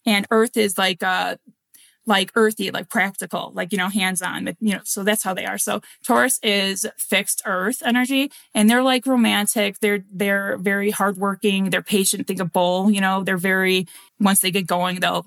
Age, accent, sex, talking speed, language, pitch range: 20-39, American, female, 195 wpm, English, 185-215 Hz